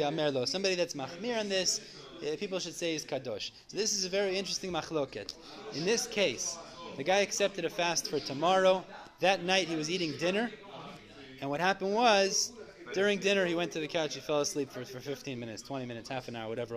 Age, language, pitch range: 30-49, English, 140-205 Hz